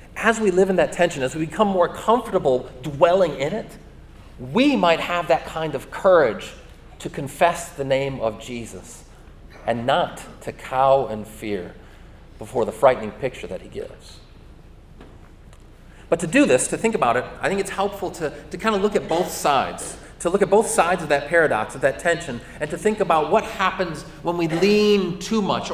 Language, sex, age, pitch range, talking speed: English, male, 30-49, 135-185 Hz, 190 wpm